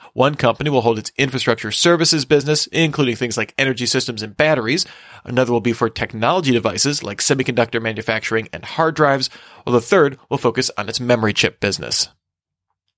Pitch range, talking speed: 115-150 Hz, 170 wpm